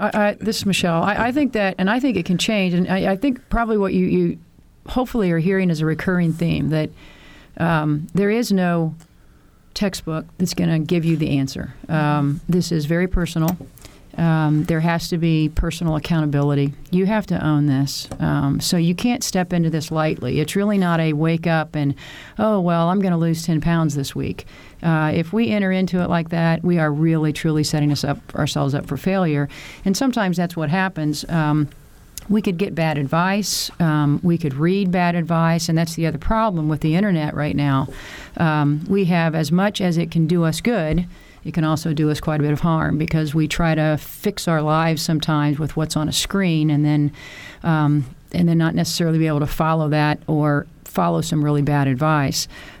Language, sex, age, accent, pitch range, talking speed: English, female, 40-59, American, 150-180 Hz, 205 wpm